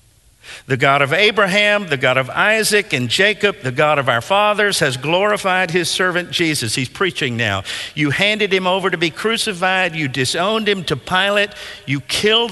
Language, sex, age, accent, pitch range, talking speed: English, male, 50-69, American, 115-180 Hz, 175 wpm